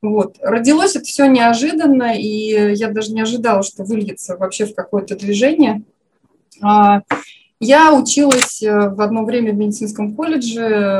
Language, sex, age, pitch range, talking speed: Russian, female, 20-39, 200-260 Hz, 130 wpm